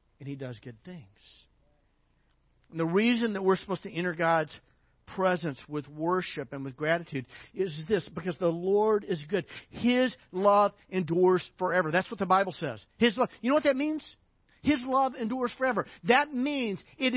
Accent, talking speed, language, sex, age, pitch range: American, 175 wpm, English, male, 50-69, 140-230 Hz